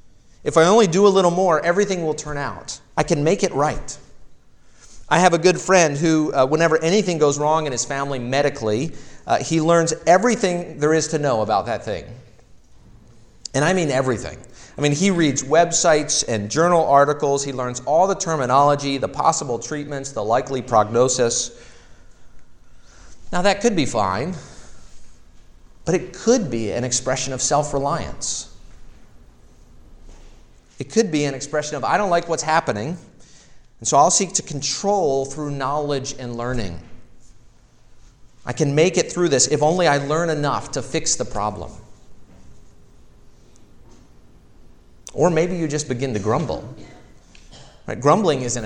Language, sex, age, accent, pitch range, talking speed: English, male, 40-59, American, 125-165 Hz, 155 wpm